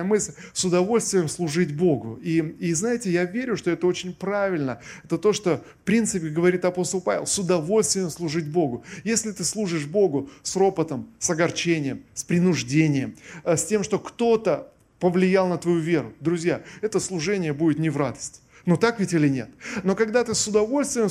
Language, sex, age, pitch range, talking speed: Russian, male, 20-39, 160-200 Hz, 175 wpm